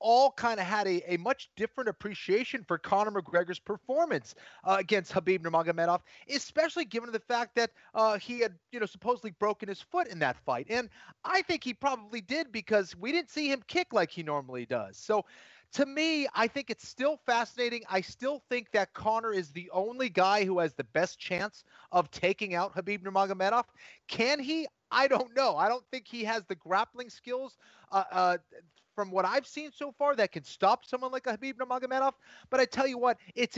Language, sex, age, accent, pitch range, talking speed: English, male, 30-49, American, 175-250 Hz, 200 wpm